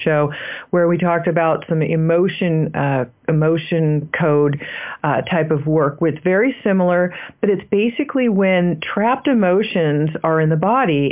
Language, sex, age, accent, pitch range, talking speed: English, female, 40-59, American, 155-195 Hz, 145 wpm